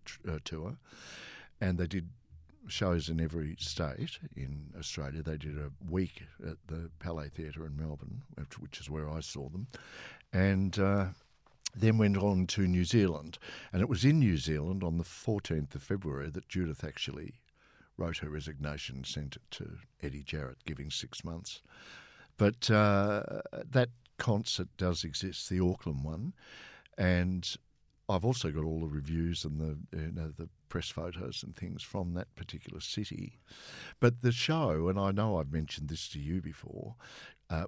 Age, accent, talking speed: 60-79, Australian, 165 wpm